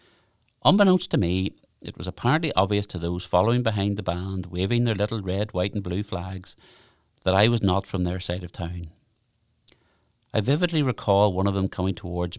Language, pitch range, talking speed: English, 90-110 Hz, 185 wpm